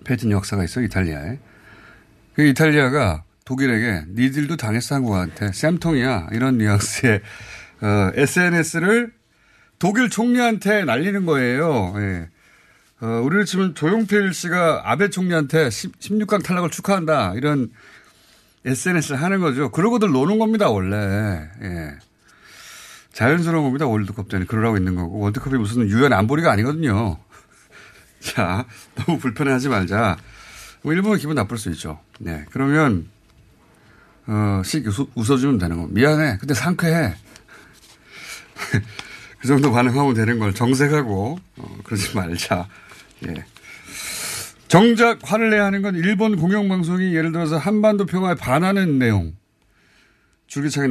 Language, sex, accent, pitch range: Korean, male, native, 105-165 Hz